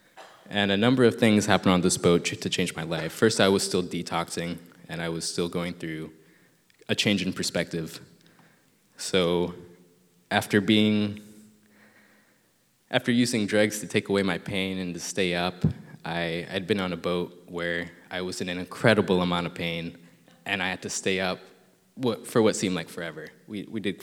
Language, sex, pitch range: English, male, 85-105 Hz